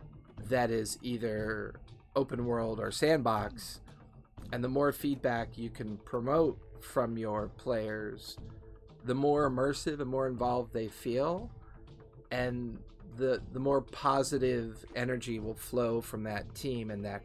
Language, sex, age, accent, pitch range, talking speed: English, male, 40-59, American, 110-135 Hz, 130 wpm